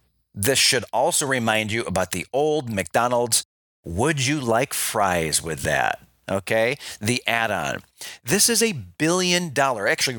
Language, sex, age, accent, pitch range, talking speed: English, male, 40-59, American, 110-155 Hz, 140 wpm